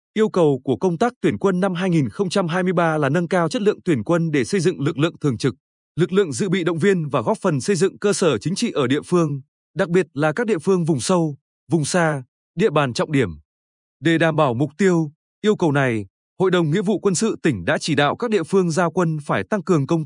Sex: male